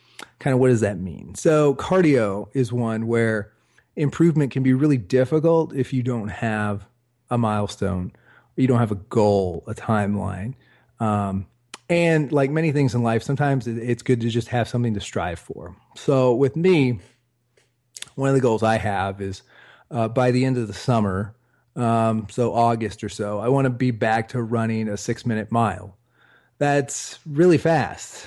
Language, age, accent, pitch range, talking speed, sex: English, 30-49, American, 110-135 Hz, 170 wpm, male